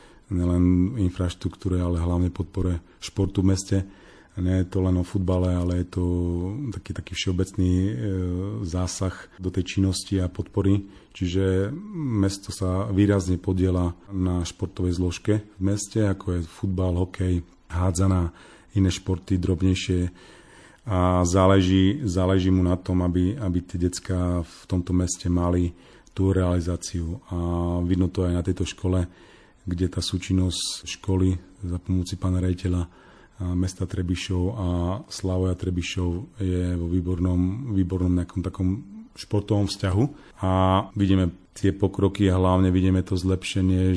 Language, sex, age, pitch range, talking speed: Slovak, male, 30-49, 90-95 Hz, 135 wpm